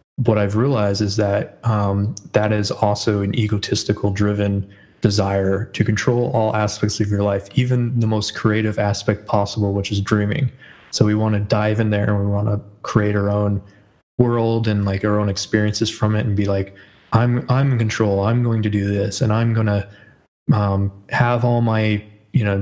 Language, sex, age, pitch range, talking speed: English, male, 20-39, 100-110 Hz, 190 wpm